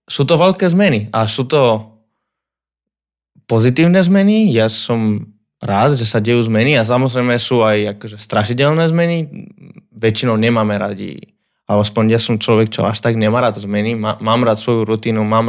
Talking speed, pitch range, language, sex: 160 wpm, 110-125 Hz, Slovak, male